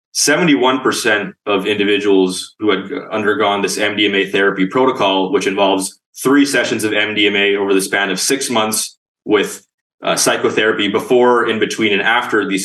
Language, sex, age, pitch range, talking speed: English, male, 20-39, 95-125 Hz, 140 wpm